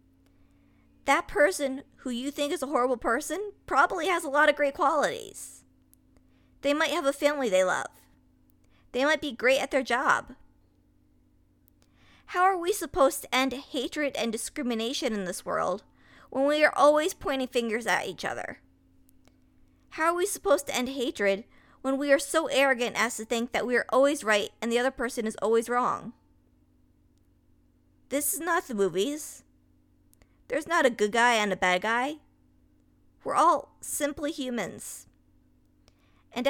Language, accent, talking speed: English, American, 160 wpm